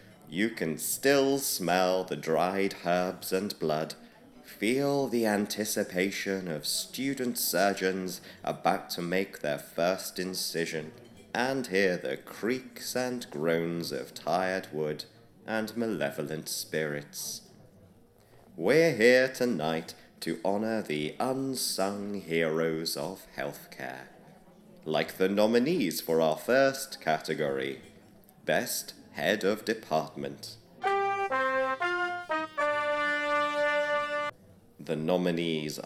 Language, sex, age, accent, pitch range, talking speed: English, male, 30-49, British, 85-135 Hz, 95 wpm